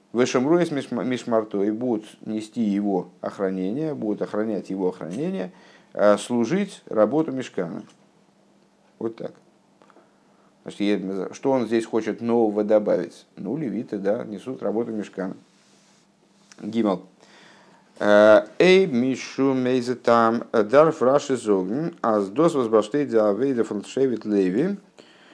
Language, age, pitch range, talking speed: Russian, 50-69, 105-135 Hz, 65 wpm